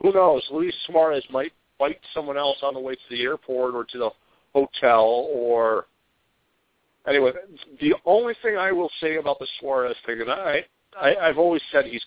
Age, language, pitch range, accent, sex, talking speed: 50-69, English, 115-195 Hz, American, male, 180 wpm